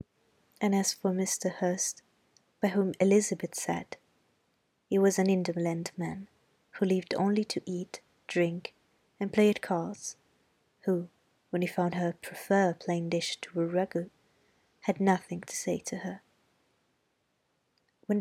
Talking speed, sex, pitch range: 140 wpm, female, 175-215 Hz